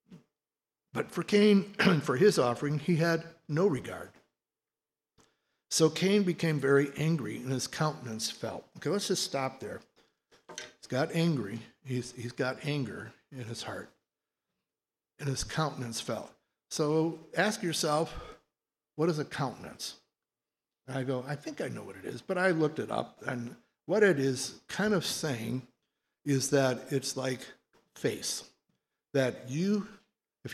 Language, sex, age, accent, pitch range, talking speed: English, male, 60-79, American, 125-160 Hz, 145 wpm